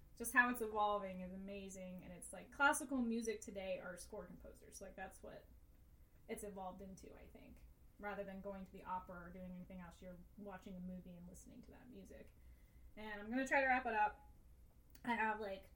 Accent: American